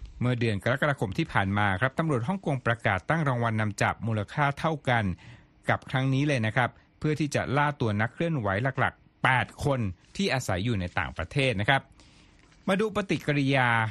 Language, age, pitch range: Thai, 60-79, 110-145 Hz